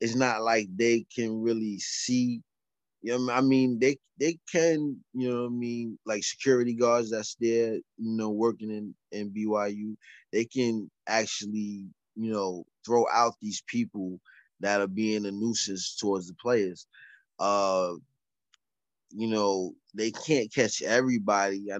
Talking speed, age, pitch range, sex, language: 150 wpm, 20-39, 105-120 Hz, male, English